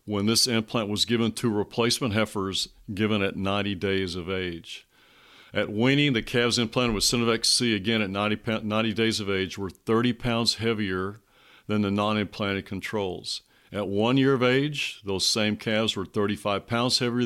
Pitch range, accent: 95-115 Hz, American